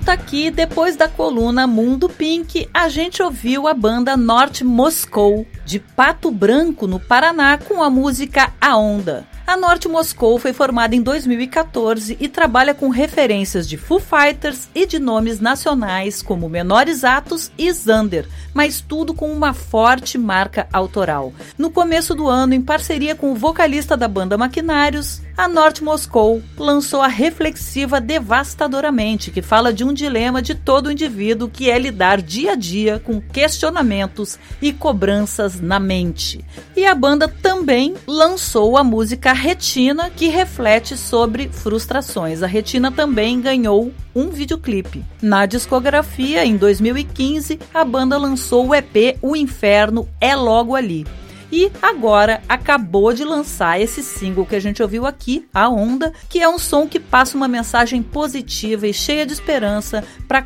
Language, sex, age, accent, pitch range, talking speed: Portuguese, female, 40-59, Brazilian, 220-300 Hz, 150 wpm